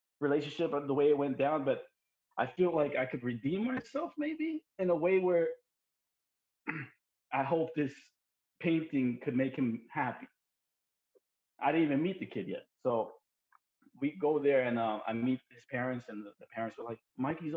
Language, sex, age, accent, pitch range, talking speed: English, male, 20-39, American, 125-180 Hz, 180 wpm